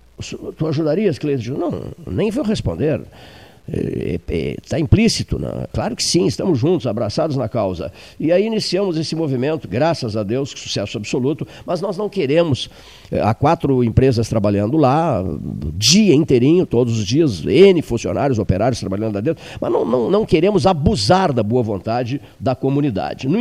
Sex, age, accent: male, 50-69, Brazilian